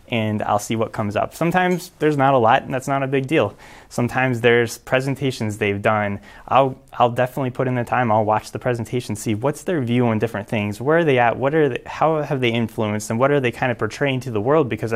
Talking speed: 250 wpm